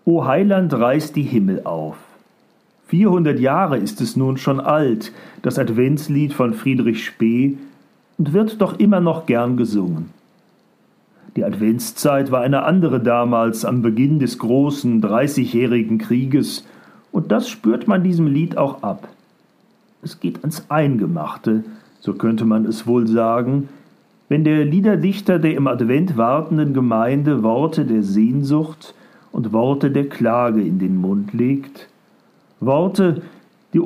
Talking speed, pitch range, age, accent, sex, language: 135 wpm, 120-175 Hz, 40-59, German, male, German